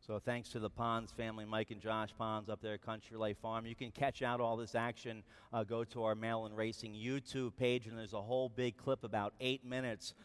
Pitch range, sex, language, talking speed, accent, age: 115-140 Hz, male, English, 240 wpm, American, 40-59